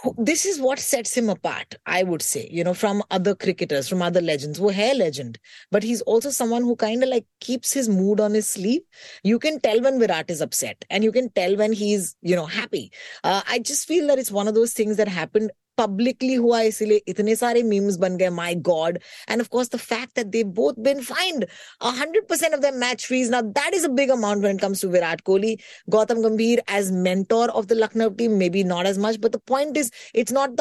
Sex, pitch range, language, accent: female, 185-250 Hz, Hindi, native